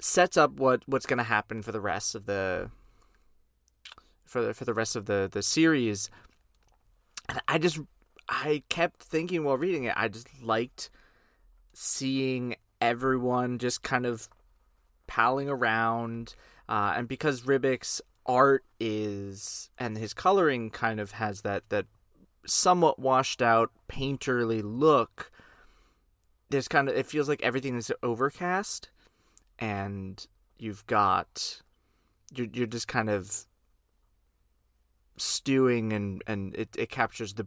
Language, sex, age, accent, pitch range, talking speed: English, male, 20-39, American, 105-135 Hz, 130 wpm